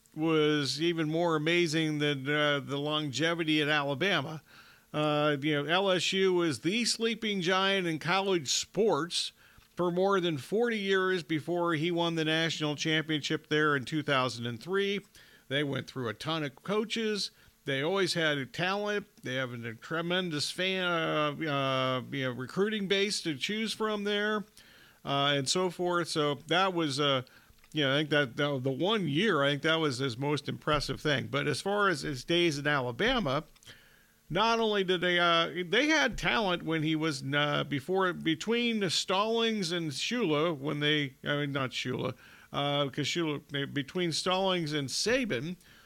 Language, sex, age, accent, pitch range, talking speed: English, male, 40-59, American, 145-185 Hz, 165 wpm